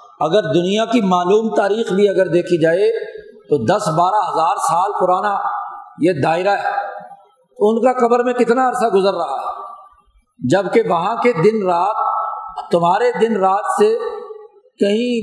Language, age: Urdu, 50-69